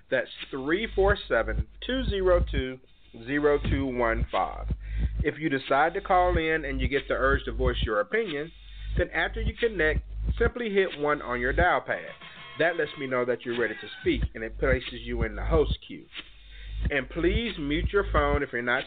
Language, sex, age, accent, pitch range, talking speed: English, male, 40-59, American, 130-180 Hz, 170 wpm